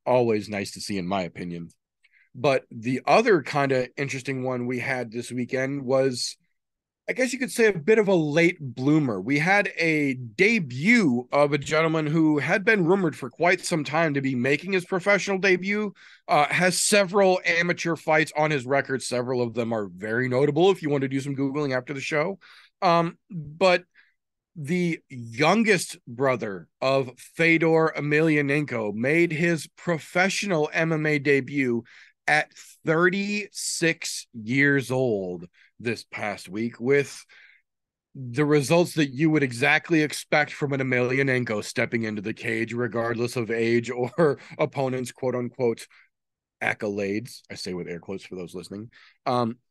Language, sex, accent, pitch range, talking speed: English, male, American, 125-170 Hz, 155 wpm